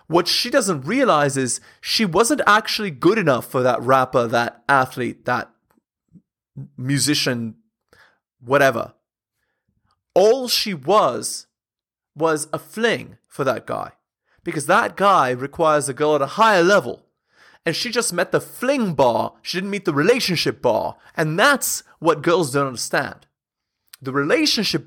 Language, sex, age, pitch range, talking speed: English, male, 20-39, 140-205 Hz, 140 wpm